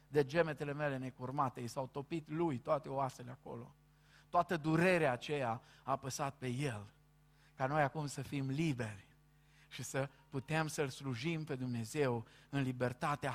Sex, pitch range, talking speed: male, 125-145 Hz, 150 wpm